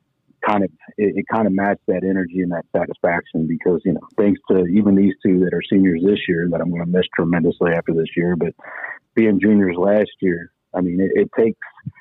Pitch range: 90-100 Hz